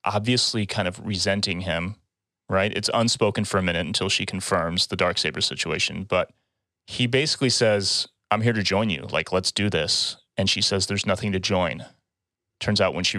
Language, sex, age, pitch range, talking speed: English, male, 30-49, 95-110 Hz, 190 wpm